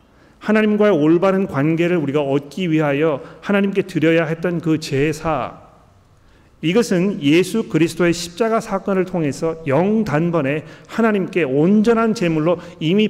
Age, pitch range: 40-59, 145-195 Hz